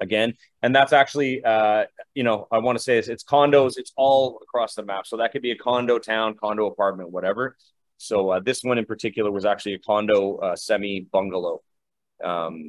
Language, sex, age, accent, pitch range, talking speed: English, male, 30-49, American, 105-140 Hz, 200 wpm